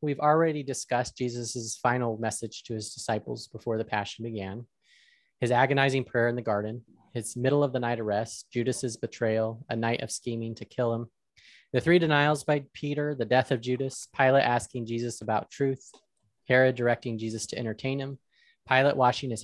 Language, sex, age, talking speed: English, male, 30-49, 175 wpm